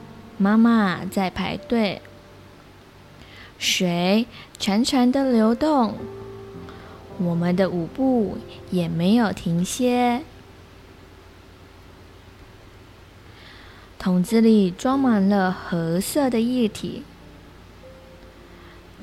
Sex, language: female, Chinese